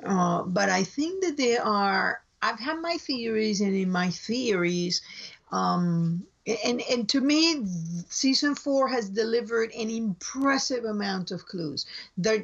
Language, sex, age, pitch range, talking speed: English, female, 50-69, 185-255 Hz, 145 wpm